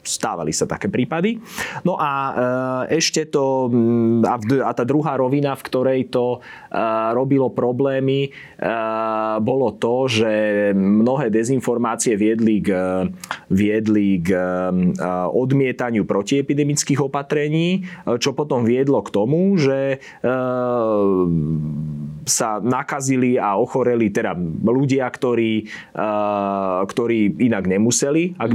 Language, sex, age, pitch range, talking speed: Slovak, male, 20-39, 105-130 Hz, 100 wpm